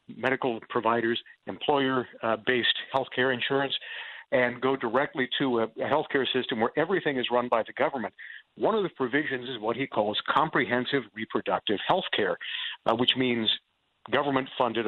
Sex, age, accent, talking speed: male, 50-69, American, 145 wpm